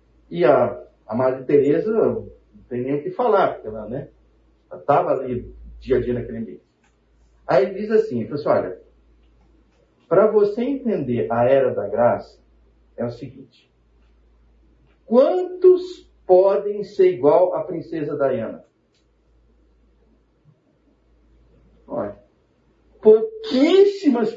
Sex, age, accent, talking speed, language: male, 50-69, Brazilian, 115 wpm, Portuguese